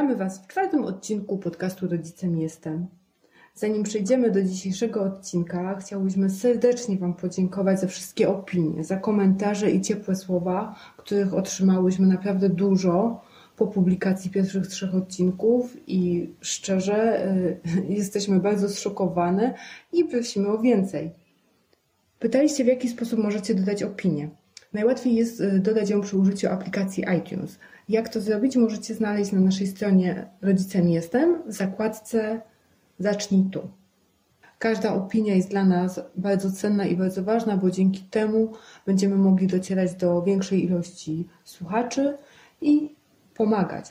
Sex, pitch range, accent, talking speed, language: female, 185-220 Hz, native, 130 wpm, Polish